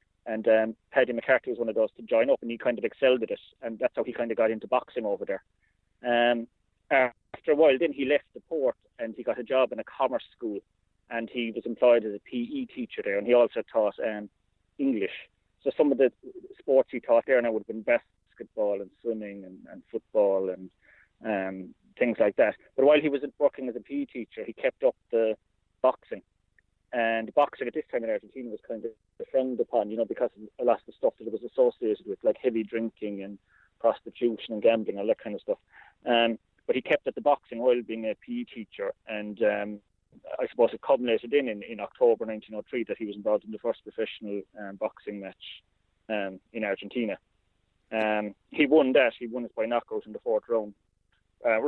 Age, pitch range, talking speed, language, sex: 30-49, 105-145 Hz, 220 wpm, English, male